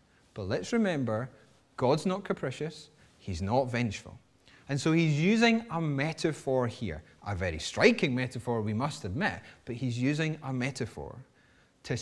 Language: English